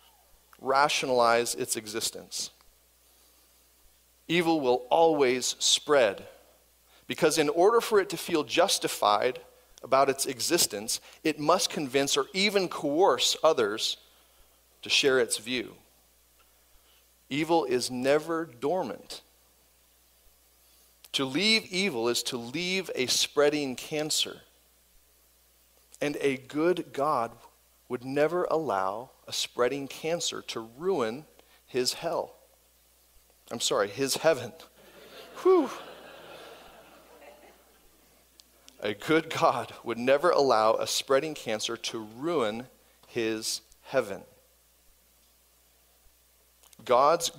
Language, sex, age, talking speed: English, male, 40-59, 95 wpm